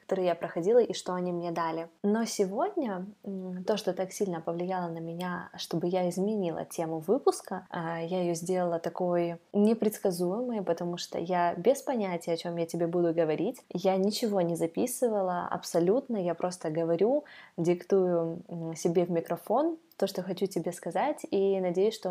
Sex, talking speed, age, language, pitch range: female, 155 wpm, 20-39, Russian, 175-205 Hz